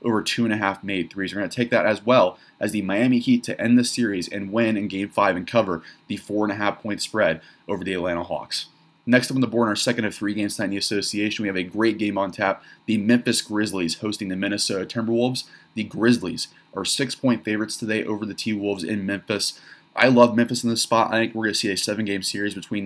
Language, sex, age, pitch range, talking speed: English, male, 20-39, 100-115 Hz, 250 wpm